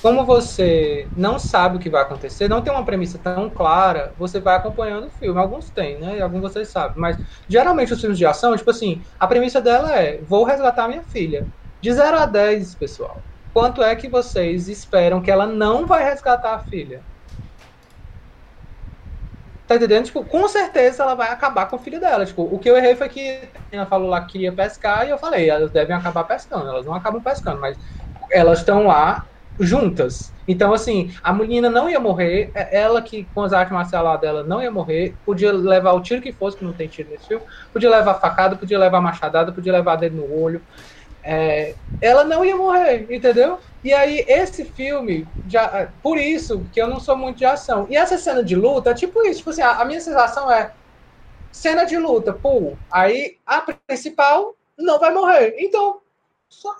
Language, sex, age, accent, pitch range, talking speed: Portuguese, male, 20-39, Brazilian, 185-275 Hz, 200 wpm